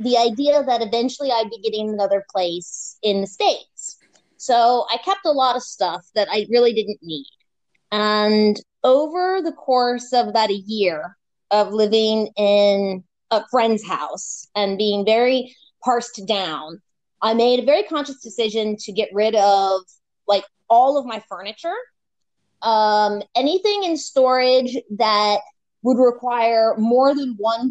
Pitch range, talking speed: 210-260 Hz, 145 wpm